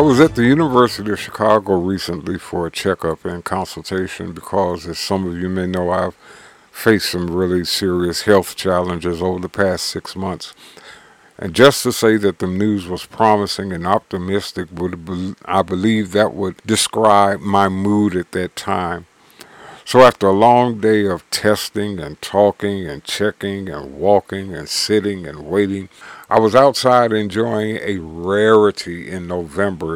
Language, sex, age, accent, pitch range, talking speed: English, male, 50-69, American, 90-110 Hz, 155 wpm